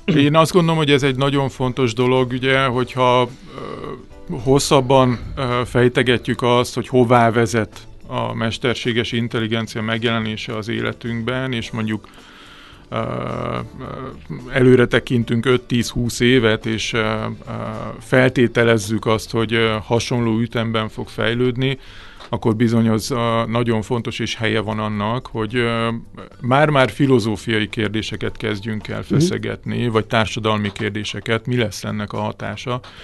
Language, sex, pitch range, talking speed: Hungarian, male, 110-125 Hz, 110 wpm